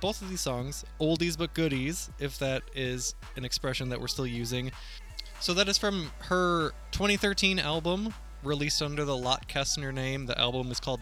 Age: 20-39